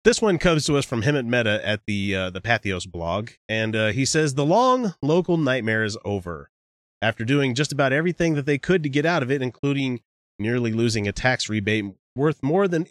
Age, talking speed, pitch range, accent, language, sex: 30-49, 215 wpm, 95-140 Hz, American, English, male